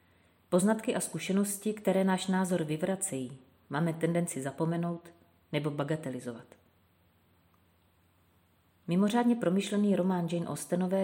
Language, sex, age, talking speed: Czech, female, 30-49, 90 wpm